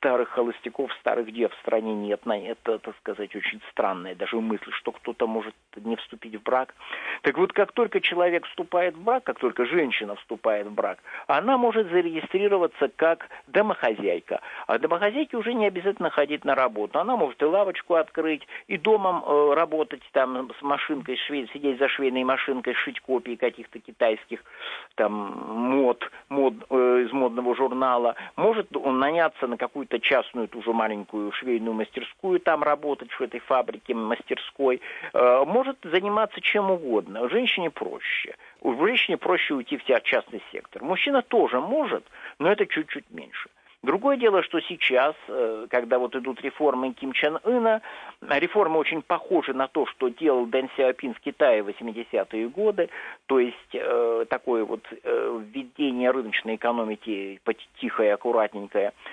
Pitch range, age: 125-205 Hz, 50-69